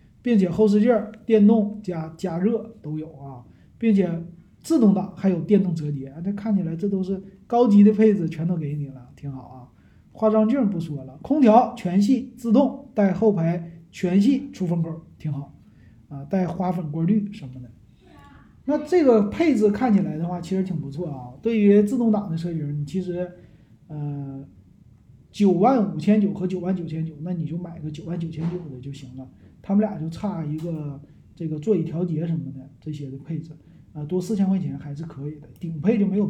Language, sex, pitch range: Chinese, male, 155-210 Hz